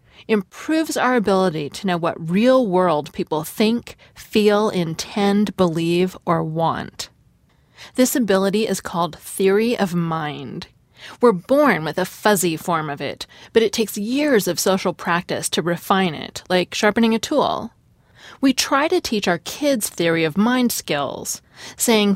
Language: English